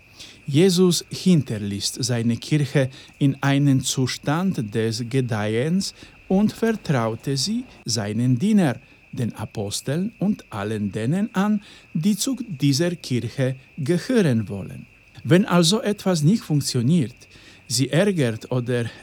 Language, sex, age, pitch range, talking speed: Polish, male, 50-69, 115-175 Hz, 105 wpm